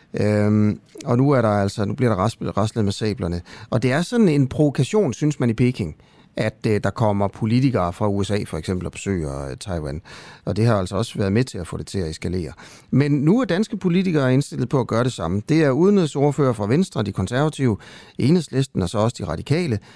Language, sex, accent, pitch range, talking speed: Danish, male, native, 100-140 Hz, 215 wpm